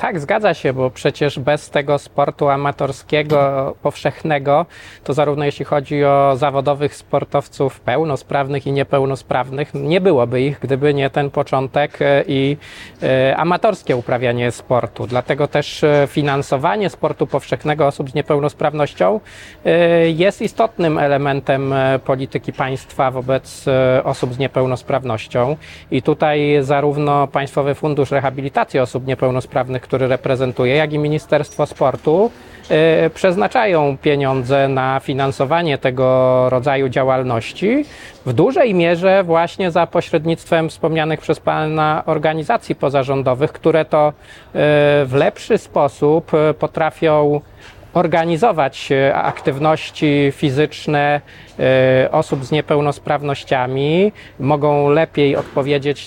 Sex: male